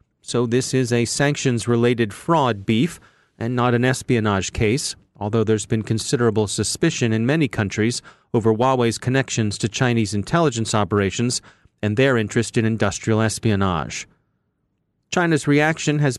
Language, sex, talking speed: English, male, 135 wpm